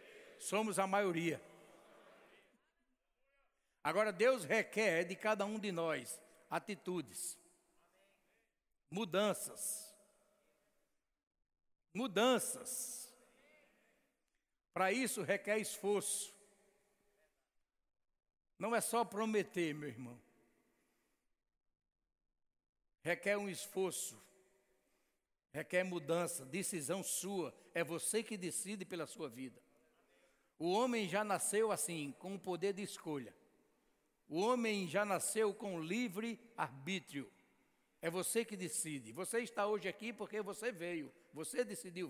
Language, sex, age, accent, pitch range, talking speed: Portuguese, male, 60-79, Brazilian, 170-220 Hz, 95 wpm